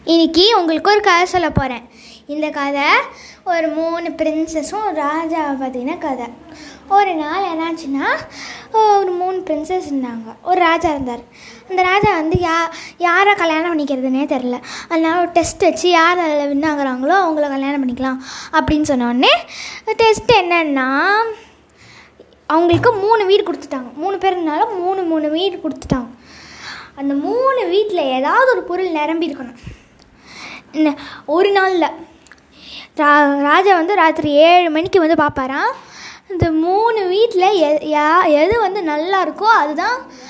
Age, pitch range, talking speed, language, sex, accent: 20-39, 295-385 Hz, 125 wpm, Tamil, female, native